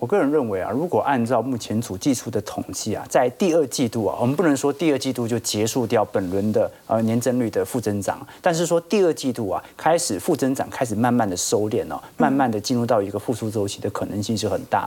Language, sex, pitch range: Chinese, male, 110-140 Hz